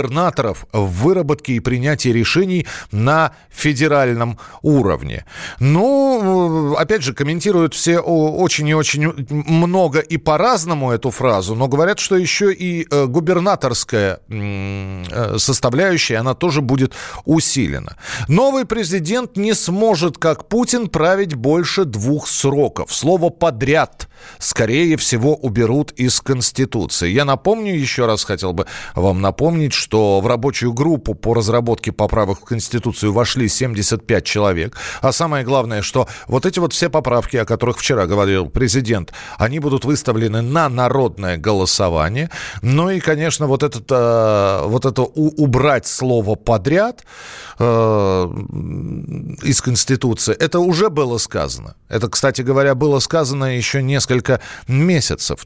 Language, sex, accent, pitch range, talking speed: Russian, male, native, 115-160 Hz, 125 wpm